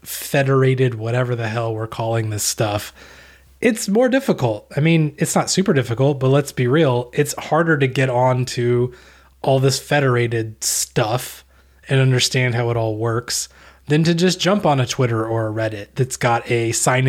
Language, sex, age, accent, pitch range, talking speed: English, male, 20-39, American, 110-140 Hz, 180 wpm